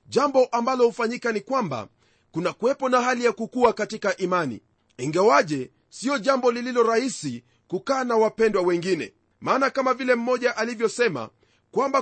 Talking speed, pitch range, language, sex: 140 wpm, 185-250 Hz, Swahili, male